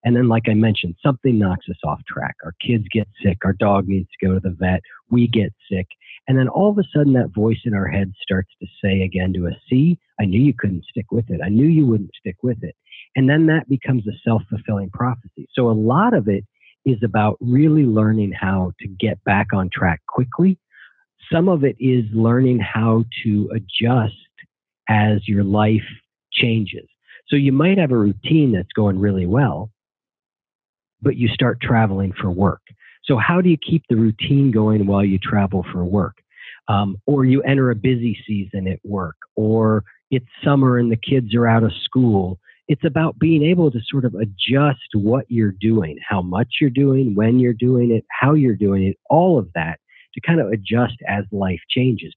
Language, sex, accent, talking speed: English, male, American, 200 wpm